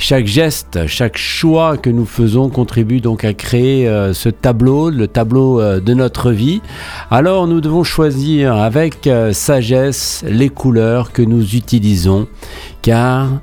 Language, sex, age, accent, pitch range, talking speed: French, male, 50-69, French, 105-135 Hz, 135 wpm